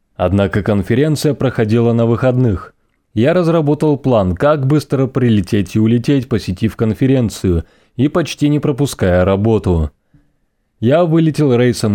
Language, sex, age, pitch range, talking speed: Russian, male, 20-39, 105-140 Hz, 115 wpm